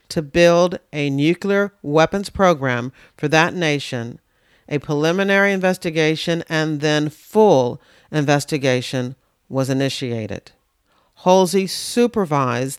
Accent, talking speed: American, 95 wpm